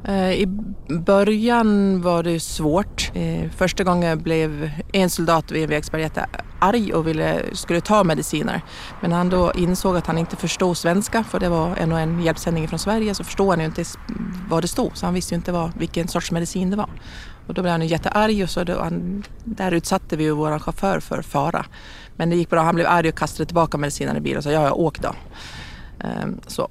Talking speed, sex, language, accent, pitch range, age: 200 wpm, female, Swedish, native, 110-180 Hz, 30-49